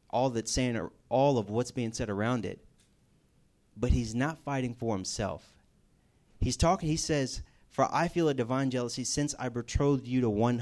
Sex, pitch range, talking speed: male, 100-130 Hz, 180 wpm